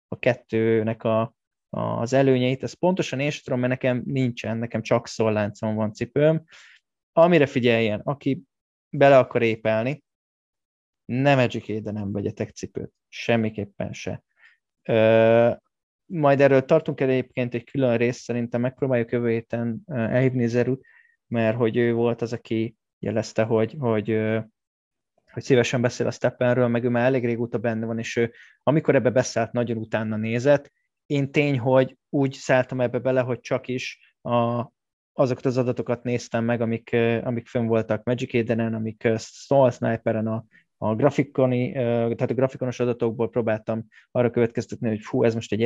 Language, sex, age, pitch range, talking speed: Hungarian, male, 20-39, 115-130 Hz, 145 wpm